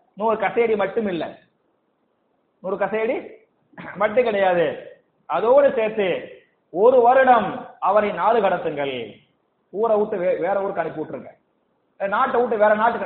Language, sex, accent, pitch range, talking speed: Tamil, male, native, 180-250 Hz, 115 wpm